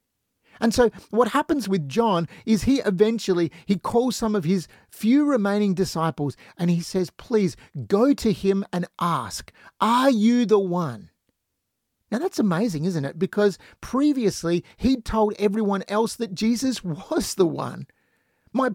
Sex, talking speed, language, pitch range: male, 155 wpm, English, 180-235 Hz